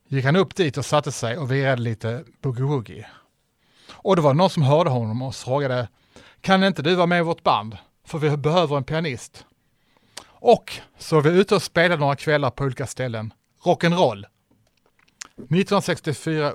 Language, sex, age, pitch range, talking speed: Swedish, male, 30-49, 120-160 Hz, 170 wpm